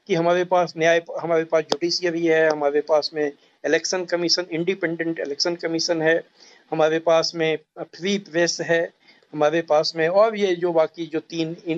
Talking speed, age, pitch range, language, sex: 165 wpm, 60-79, 160-205 Hz, Hindi, male